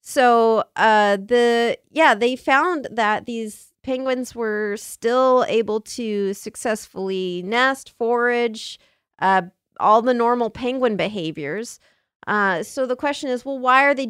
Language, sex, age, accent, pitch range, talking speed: English, female, 30-49, American, 190-245 Hz, 130 wpm